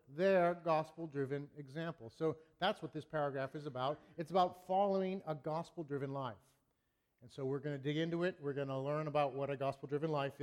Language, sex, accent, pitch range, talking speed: English, male, American, 140-180 Hz, 190 wpm